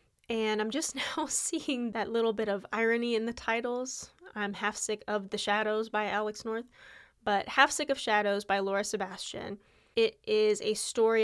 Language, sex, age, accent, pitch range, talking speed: English, female, 10-29, American, 205-245 Hz, 180 wpm